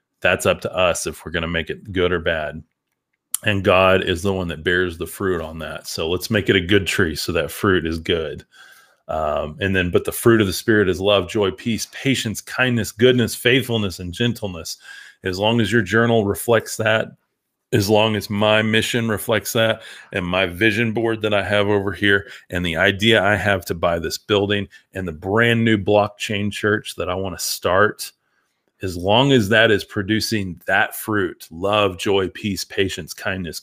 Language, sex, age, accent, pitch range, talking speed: English, male, 30-49, American, 95-115 Hz, 200 wpm